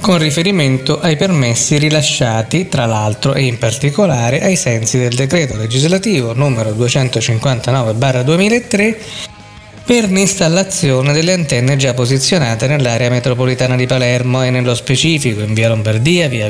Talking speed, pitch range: 125 wpm, 125-165 Hz